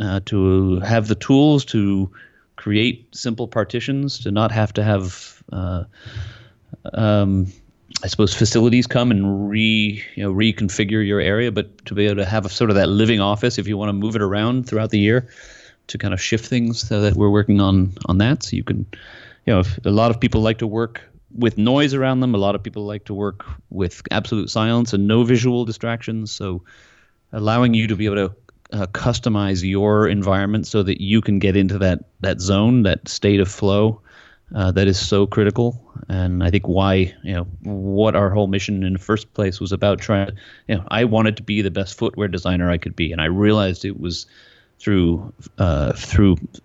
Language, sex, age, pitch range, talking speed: English, male, 30-49, 95-110 Hz, 205 wpm